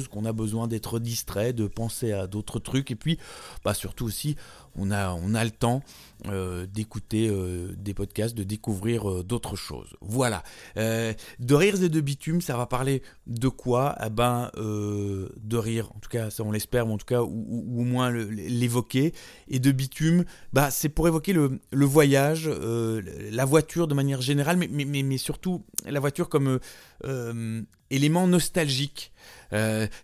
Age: 30-49